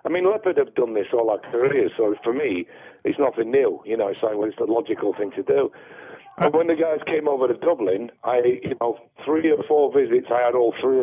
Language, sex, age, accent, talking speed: English, male, 50-69, British, 235 wpm